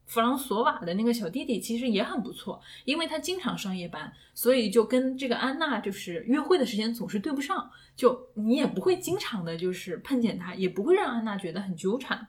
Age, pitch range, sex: 10-29, 200-265 Hz, female